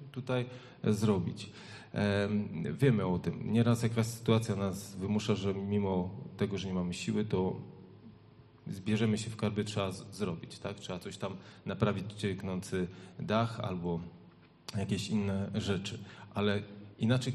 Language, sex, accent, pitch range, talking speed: Polish, male, native, 95-115 Hz, 130 wpm